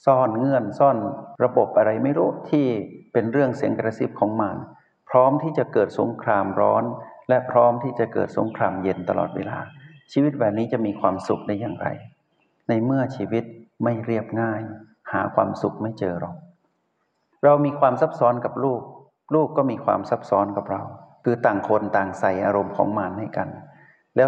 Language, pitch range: Thai, 105-130 Hz